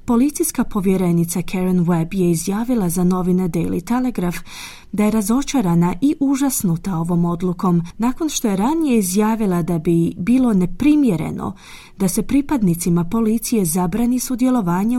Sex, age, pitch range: female, 30-49, 175-235 Hz